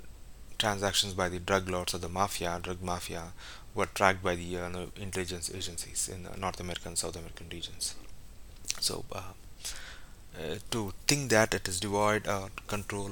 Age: 30-49